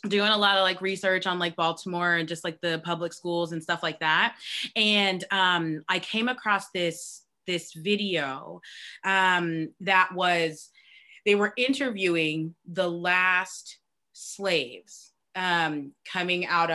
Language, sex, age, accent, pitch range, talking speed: English, female, 20-39, American, 160-200 Hz, 140 wpm